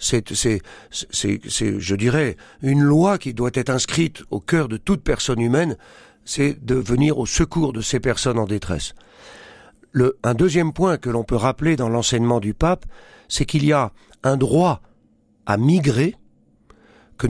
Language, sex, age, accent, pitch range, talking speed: French, male, 50-69, French, 120-155 Hz, 170 wpm